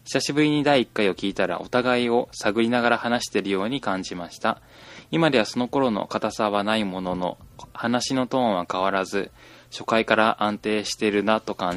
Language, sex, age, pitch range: Japanese, male, 20-39, 105-135 Hz